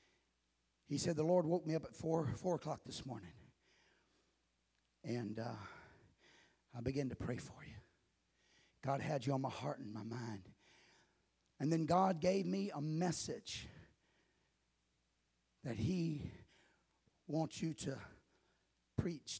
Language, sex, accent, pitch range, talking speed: English, male, American, 110-175 Hz, 130 wpm